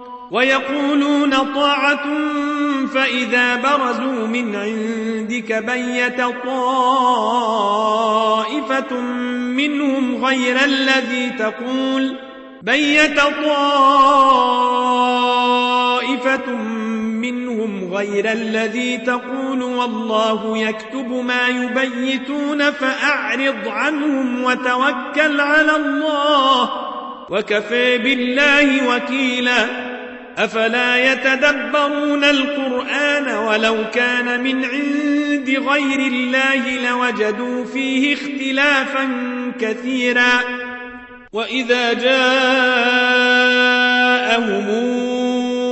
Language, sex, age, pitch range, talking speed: Arabic, male, 40-59, 245-270 Hz, 60 wpm